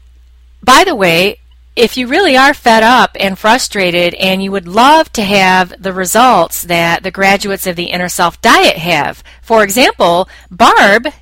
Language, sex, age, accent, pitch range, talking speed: English, female, 40-59, American, 175-245 Hz, 165 wpm